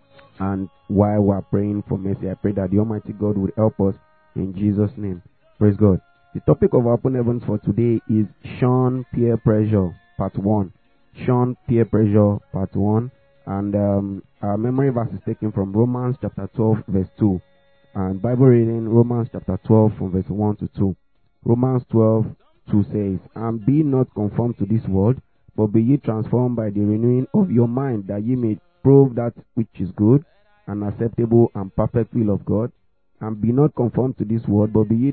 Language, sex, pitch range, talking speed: English, male, 105-125 Hz, 190 wpm